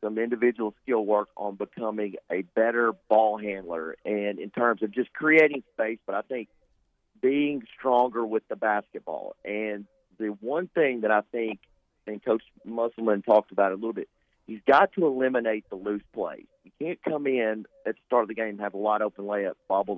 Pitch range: 105-130 Hz